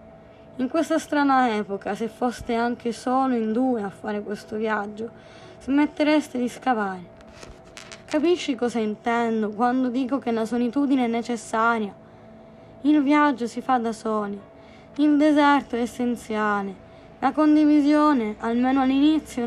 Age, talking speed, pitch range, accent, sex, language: 20-39, 125 wpm, 225-295 Hz, native, female, Italian